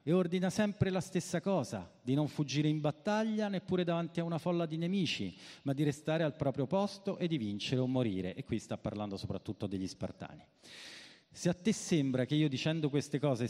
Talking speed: 200 wpm